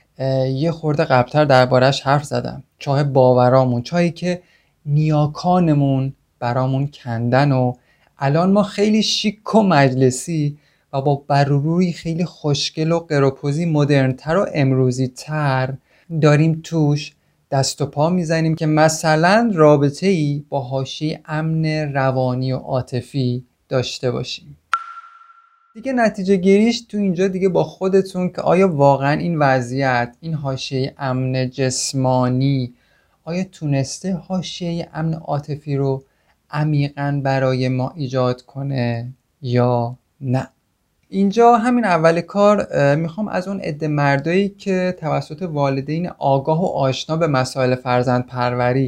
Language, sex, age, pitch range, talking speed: Persian, male, 30-49, 130-170 Hz, 120 wpm